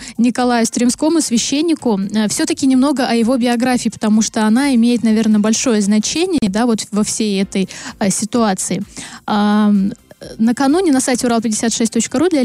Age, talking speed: 20-39, 135 wpm